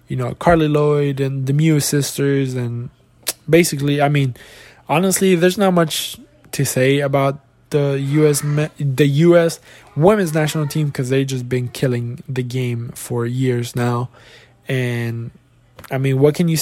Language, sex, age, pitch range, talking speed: English, male, 20-39, 125-150 Hz, 150 wpm